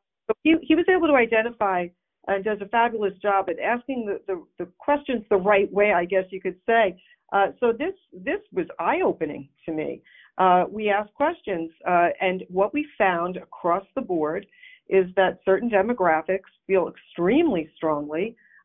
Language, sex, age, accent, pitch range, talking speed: English, female, 50-69, American, 180-245 Hz, 165 wpm